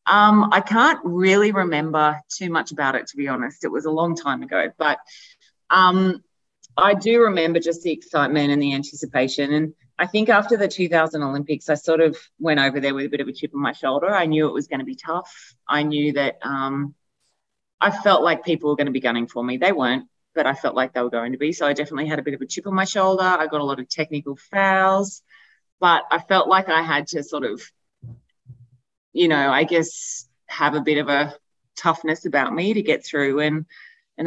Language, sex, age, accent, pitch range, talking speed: English, female, 30-49, Australian, 140-185 Hz, 230 wpm